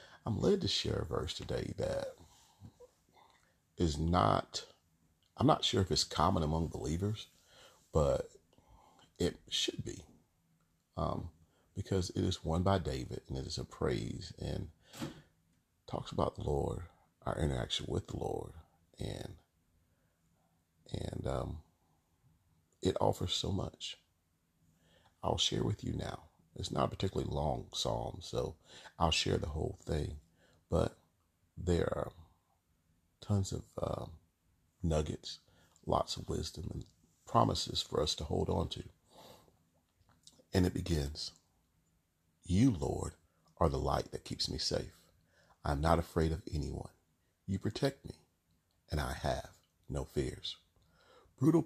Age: 40-59